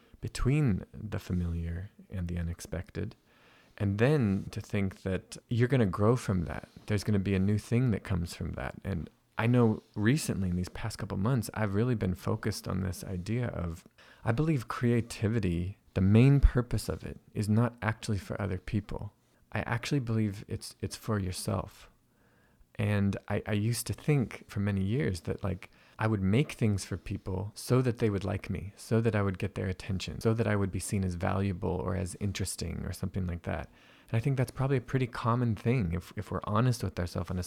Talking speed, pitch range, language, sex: 205 wpm, 95-115 Hz, English, male